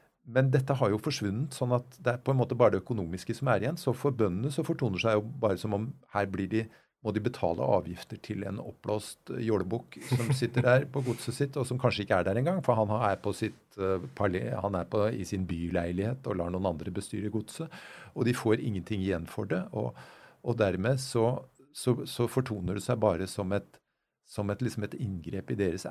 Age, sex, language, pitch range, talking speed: 50-69, male, English, 100-130 Hz, 215 wpm